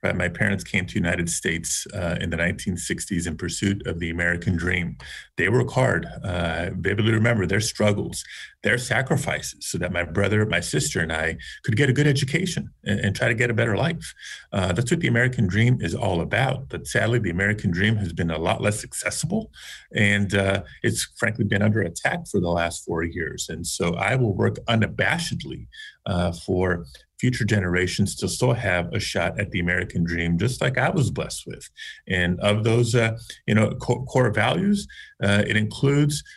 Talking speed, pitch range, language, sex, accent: 195 wpm, 90-115 Hz, English, male, American